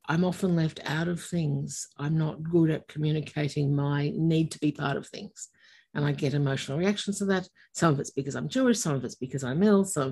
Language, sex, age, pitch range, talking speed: English, female, 60-79, 150-190 Hz, 225 wpm